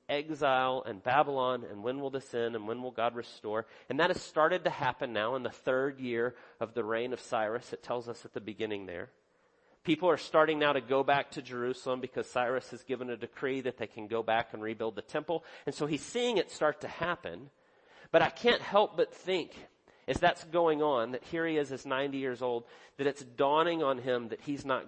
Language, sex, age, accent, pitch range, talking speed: English, male, 40-59, American, 120-150 Hz, 225 wpm